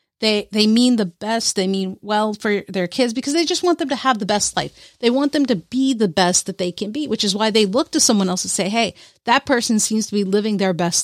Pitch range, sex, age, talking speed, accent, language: 205-270 Hz, female, 40-59, 275 wpm, American, English